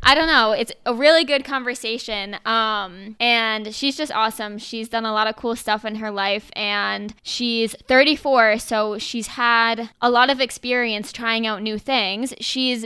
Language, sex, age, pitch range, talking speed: English, female, 20-39, 215-255 Hz, 175 wpm